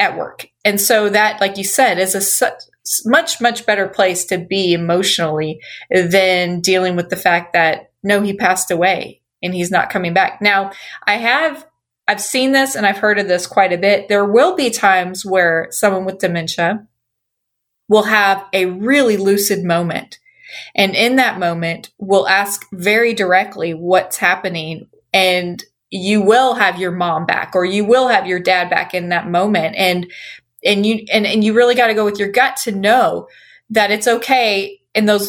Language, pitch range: English, 185-220 Hz